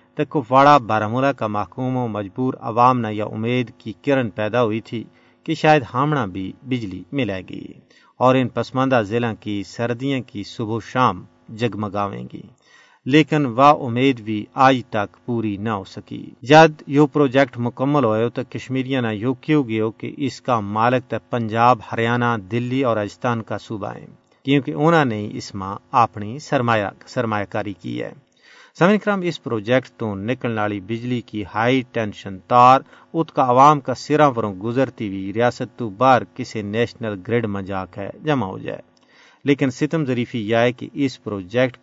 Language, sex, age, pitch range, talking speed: Urdu, male, 50-69, 110-135 Hz, 170 wpm